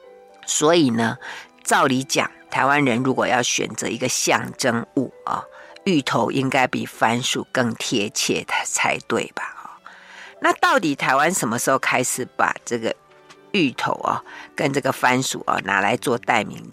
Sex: female